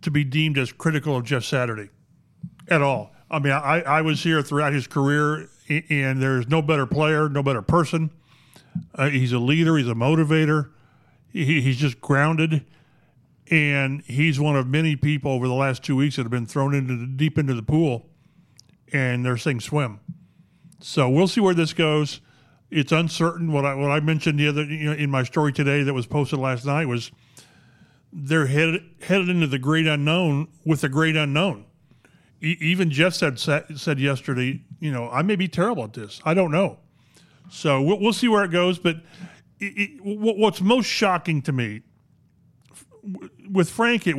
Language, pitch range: English, 135-160 Hz